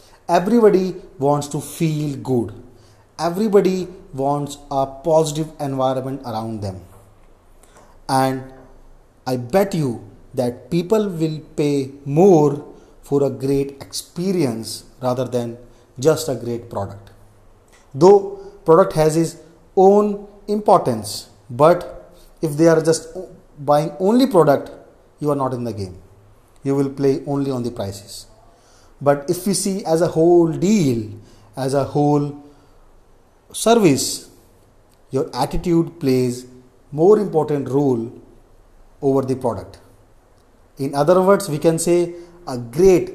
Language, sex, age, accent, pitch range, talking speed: English, male, 30-49, Indian, 120-175 Hz, 120 wpm